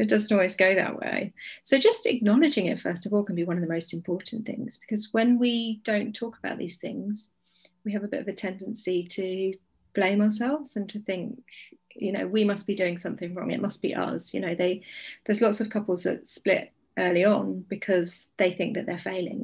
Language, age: English, 30-49